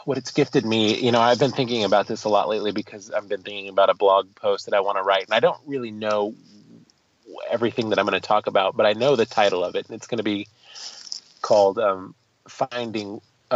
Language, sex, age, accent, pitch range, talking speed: English, male, 30-49, American, 100-120 Hz, 240 wpm